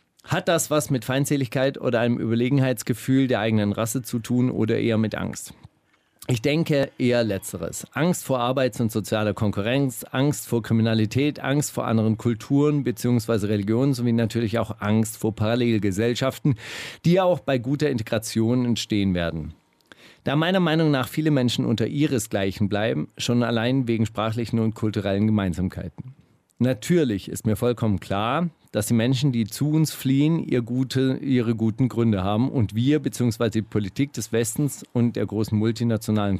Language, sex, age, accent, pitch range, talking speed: German, male, 40-59, German, 110-140 Hz, 155 wpm